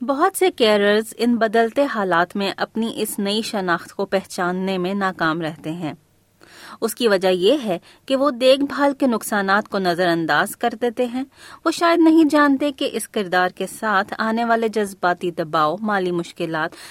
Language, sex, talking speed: Urdu, female, 175 wpm